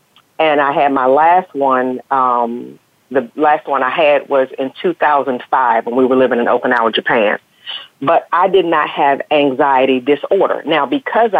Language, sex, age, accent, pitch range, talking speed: English, female, 40-59, American, 130-155 Hz, 165 wpm